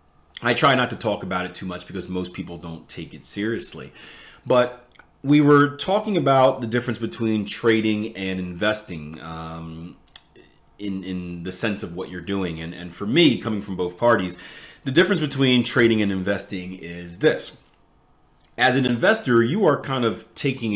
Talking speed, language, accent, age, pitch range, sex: 175 wpm, English, American, 30-49, 95-125 Hz, male